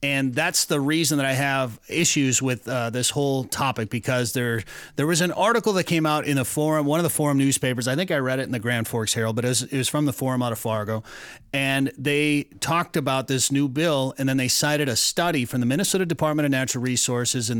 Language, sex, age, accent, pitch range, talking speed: English, male, 30-49, American, 125-155 Hz, 245 wpm